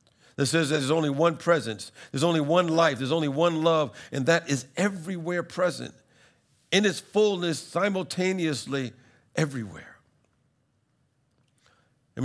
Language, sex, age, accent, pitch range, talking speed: English, male, 50-69, American, 130-170 Hz, 125 wpm